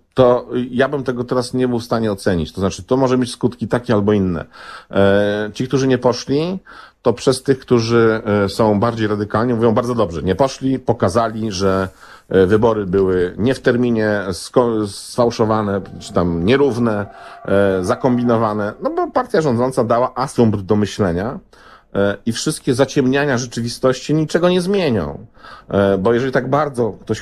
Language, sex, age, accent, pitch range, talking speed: Polish, male, 50-69, native, 100-130 Hz, 150 wpm